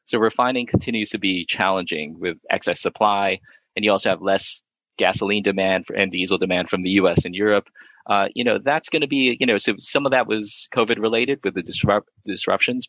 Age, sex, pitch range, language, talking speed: 20-39, male, 95-120 Hz, English, 195 wpm